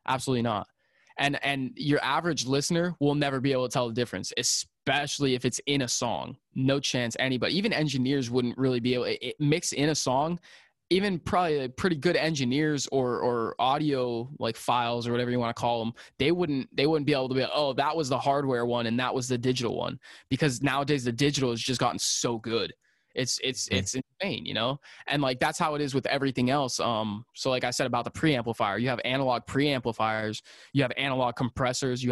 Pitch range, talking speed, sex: 120-140 Hz, 210 wpm, male